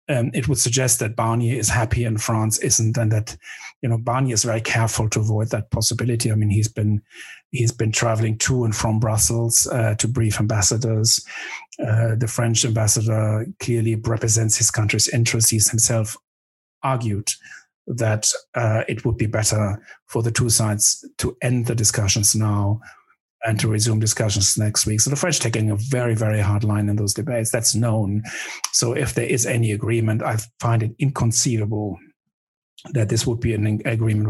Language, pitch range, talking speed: English, 105-120 Hz, 175 wpm